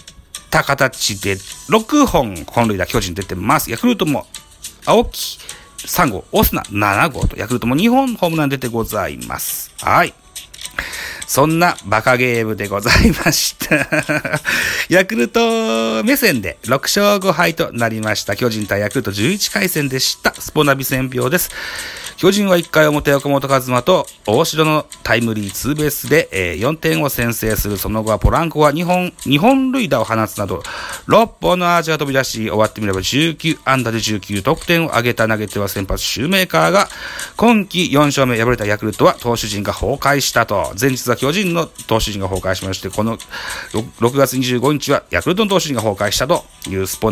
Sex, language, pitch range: male, Japanese, 105-160 Hz